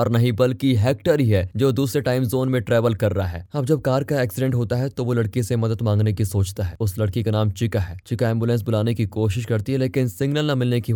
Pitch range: 100-125 Hz